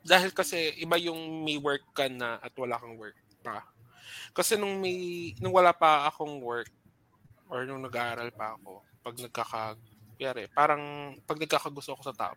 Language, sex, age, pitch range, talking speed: Filipino, male, 20-39, 120-170 Hz, 165 wpm